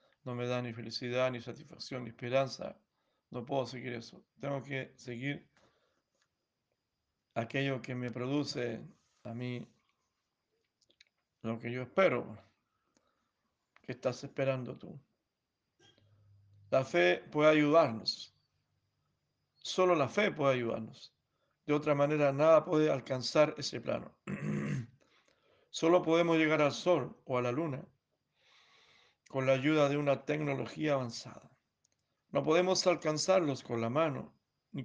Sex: male